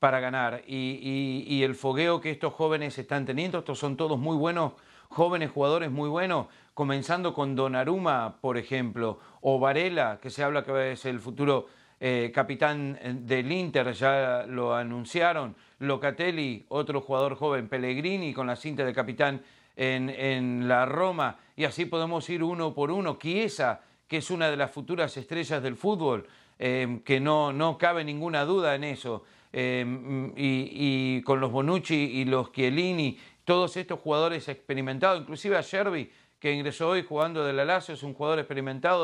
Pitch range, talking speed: 135-165 Hz, 170 wpm